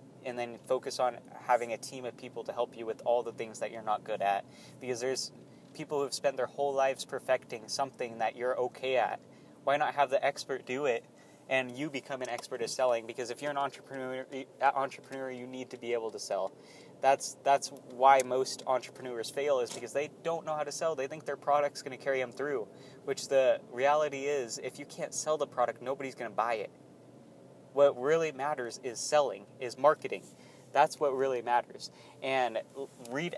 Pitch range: 120-140 Hz